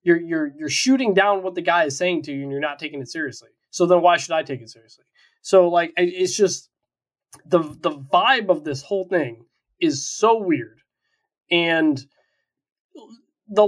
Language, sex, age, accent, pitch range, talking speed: English, male, 20-39, American, 155-220 Hz, 185 wpm